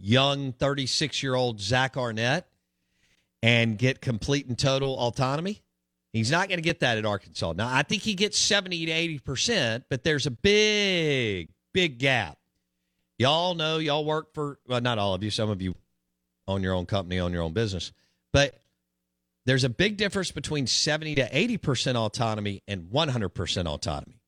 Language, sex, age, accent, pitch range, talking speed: English, male, 50-69, American, 95-140 Hz, 165 wpm